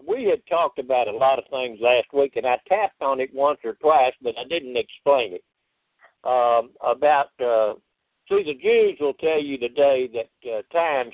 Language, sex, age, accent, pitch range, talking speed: English, male, 60-79, American, 120-200 Hz, 195 wpm